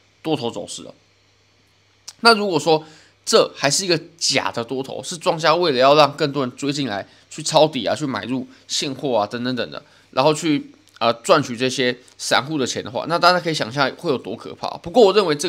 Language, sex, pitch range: Chinese, male, 120-165 Hz